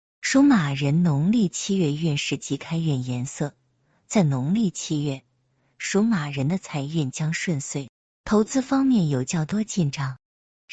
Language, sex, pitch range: Chinese, female, 140-195 Hz